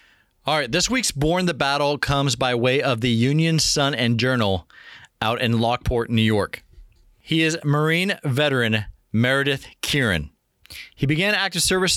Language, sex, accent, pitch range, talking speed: English, male, American, 125-160 Hz, 155 wpm